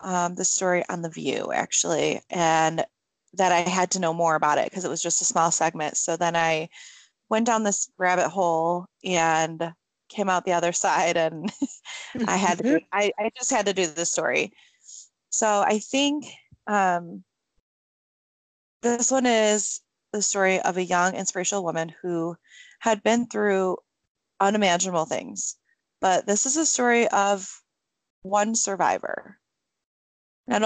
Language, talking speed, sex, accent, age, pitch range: English, 155 wpm, female, American, 20-39, 175-215 Hz